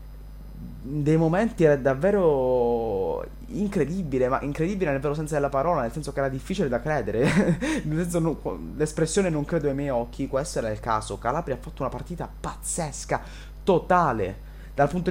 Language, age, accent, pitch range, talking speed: Italian, 20-39, native, 120-155 Hz, 165 wpm